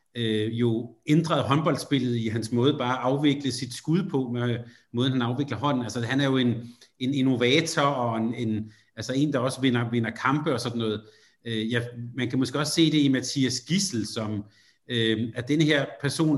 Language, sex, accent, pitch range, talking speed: Danish, male, native, 120-140 Hz, 200 wpm